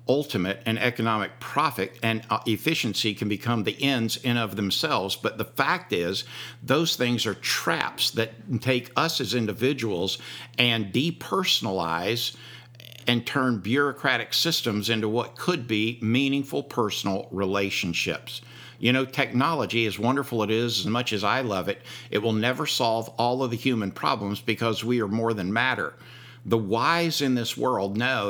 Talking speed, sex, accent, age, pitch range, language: 155 wpm, male, American, 60-79, 105-125 Hz, English